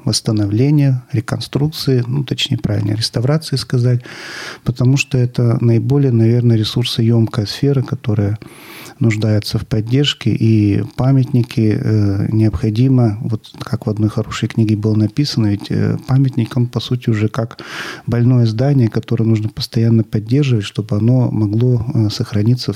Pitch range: 105-125 Hz